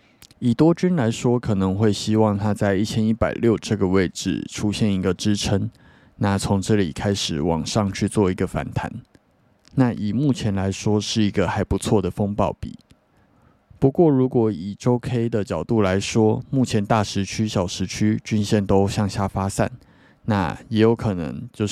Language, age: Chinese, 20-39